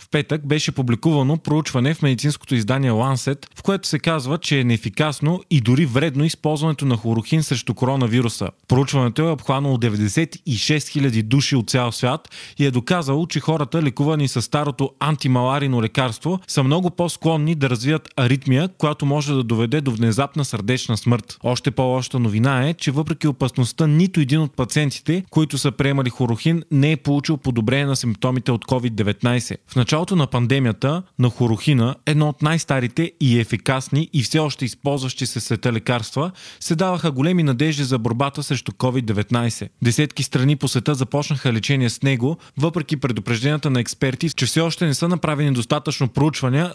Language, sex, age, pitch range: Bulgarian, male, 30-49, 125-155 Hz